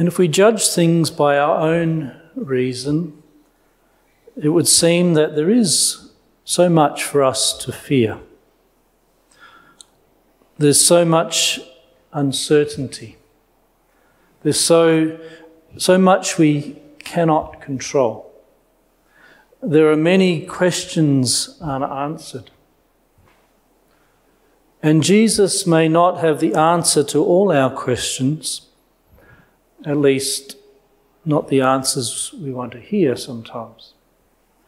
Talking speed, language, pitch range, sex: 100 wpm, English, 140-180 Hz, male